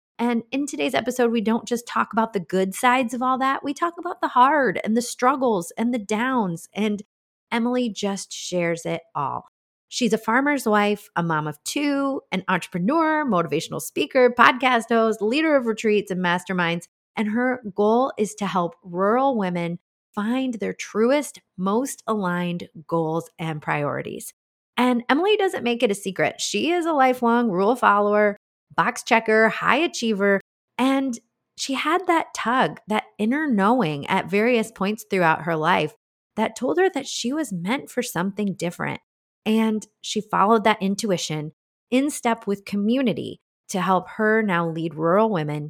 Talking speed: 165 wpm